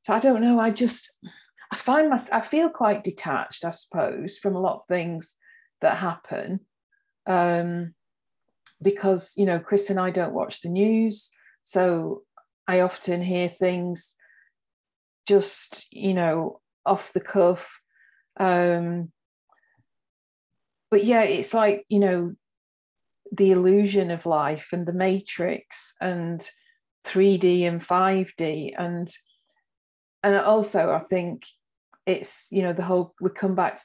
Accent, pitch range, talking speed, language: British, 175-200 Hz, 135 wpm, English